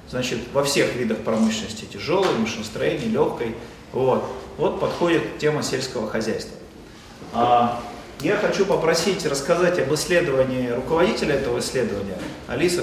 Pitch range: 130-170 Hz